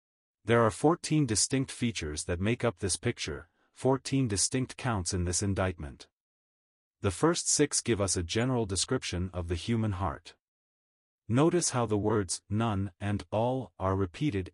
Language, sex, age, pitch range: English, male, 30-49, 90-120 Hz